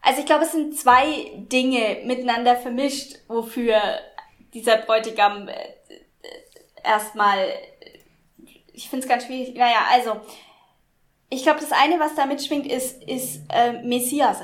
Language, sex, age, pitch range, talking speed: German, female, 10-29, 215-255 Hz, 130 wpm